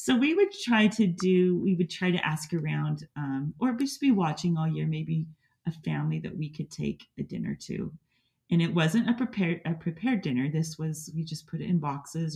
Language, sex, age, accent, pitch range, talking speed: English, female, 30-49, American, 140-170 Hz, 220 wpm